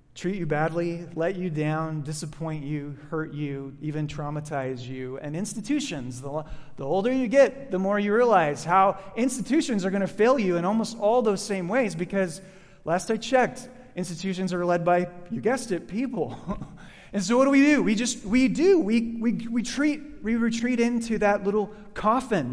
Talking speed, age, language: 185 wpm, 30-49, English